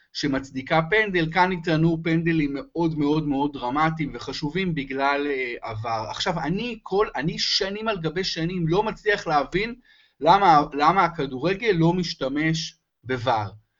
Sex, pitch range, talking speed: male, 135-195 Hz, 120 wpm